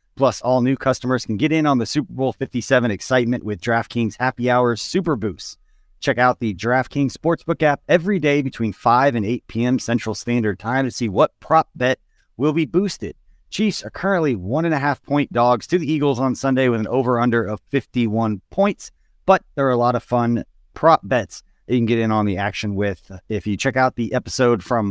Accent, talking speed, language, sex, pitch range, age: American, 200 wpm, English, male, 110-140 Hz, 30-49